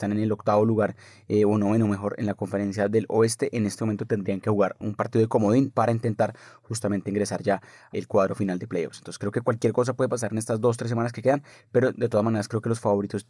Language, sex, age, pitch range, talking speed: Spanish, male, 20-39, 100-115 Hz, 255 wpm